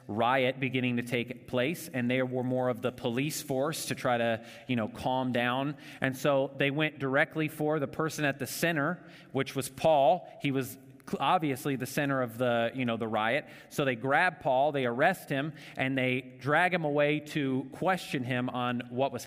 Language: English